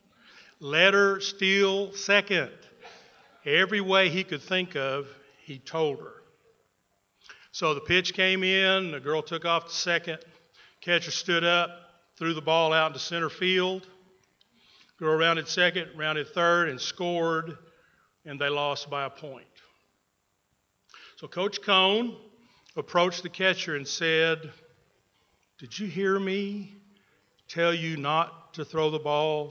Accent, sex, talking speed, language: American, male, 135 wpm, English